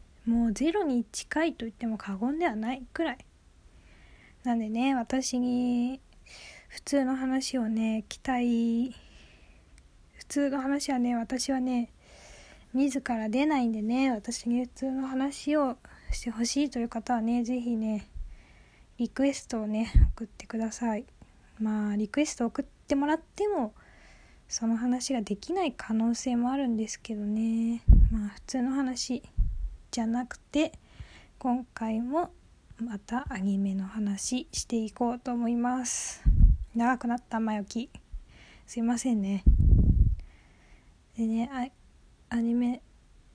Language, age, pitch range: Japanese, 20-39, 225-270 Hz